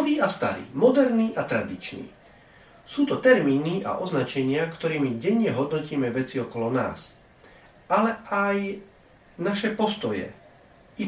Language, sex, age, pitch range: Slovak, male, 40-59, 130-195 Hz